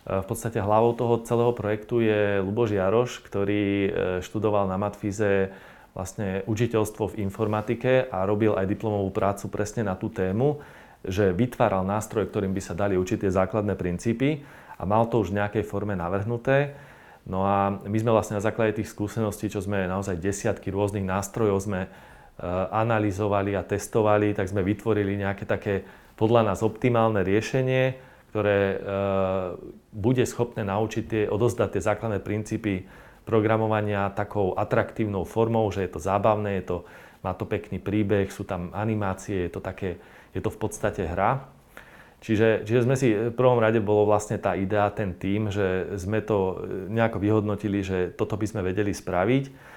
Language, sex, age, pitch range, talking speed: Slovak, male, 30-49, 100-110 Hz, 155 wpm